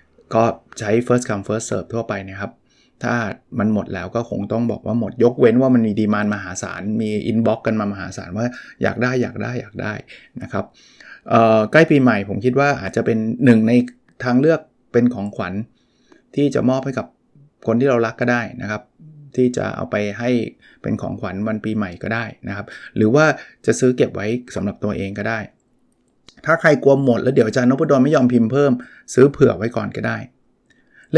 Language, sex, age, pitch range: Thai, male, 20-39, 105-130 Hz